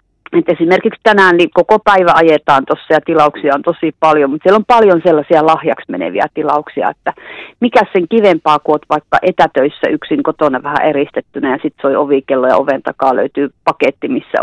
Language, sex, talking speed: Finnish, female, 175 wpm